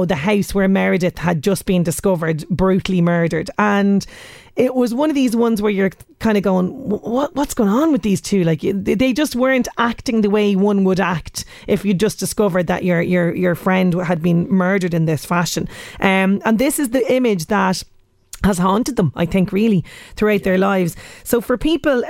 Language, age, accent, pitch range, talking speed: English, 30-49, Irish, 190-235 Hz, 200 wpm